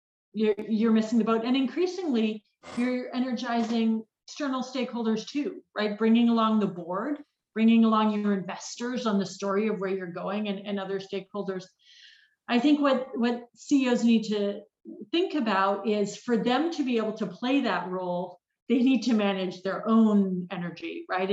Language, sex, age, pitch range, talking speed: English, female, 40-59, 195-250 Hz, 165 wpm